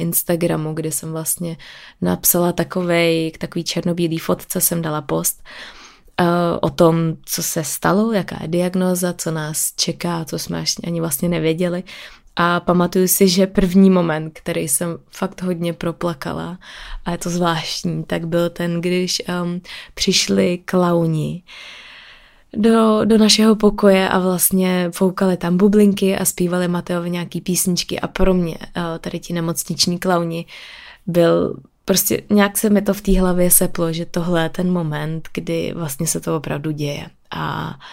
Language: Czech